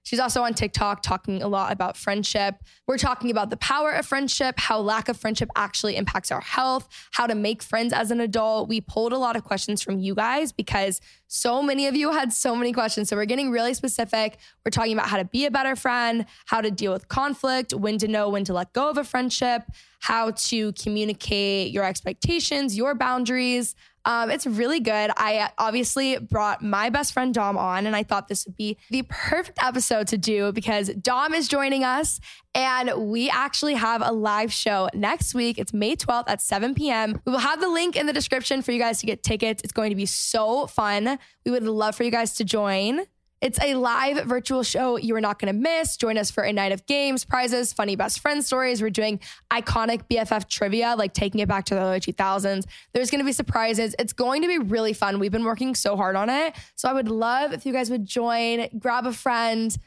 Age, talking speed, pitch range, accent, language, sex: 10-29, 220 wpm, 210-255 Hz, American, English, female